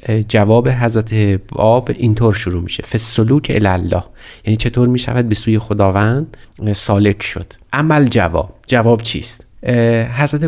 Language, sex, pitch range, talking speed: Persian, male, 100-120 Hz, 125 wpm